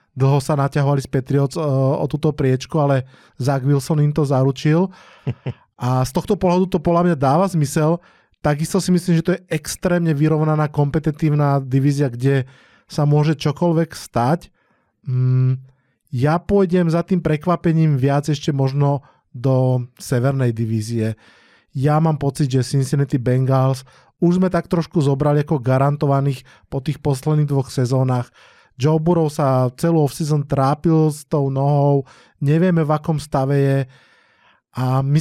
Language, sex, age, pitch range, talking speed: Slovak, male, 20-39, 135-160 Hz, 140 wpm